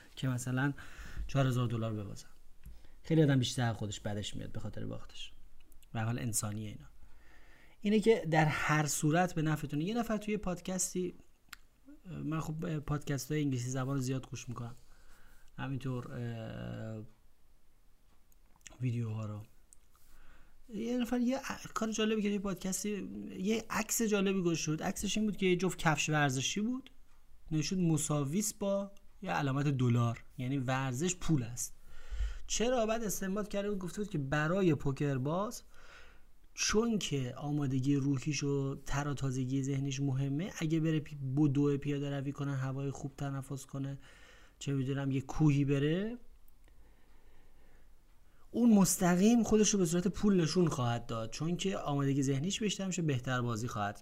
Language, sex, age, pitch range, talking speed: Persian, male, 30-49, 120-180 Hz, 140 wpm